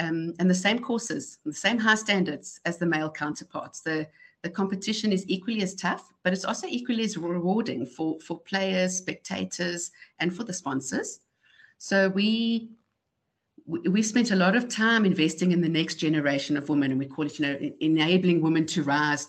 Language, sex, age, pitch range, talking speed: English, female, 60-79, 160-205 Hz, 185 wpm